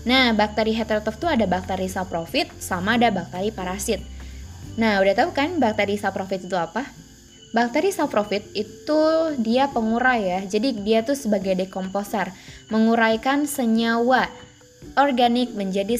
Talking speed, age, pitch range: 130 wpm, 20-39, 195-250 Hz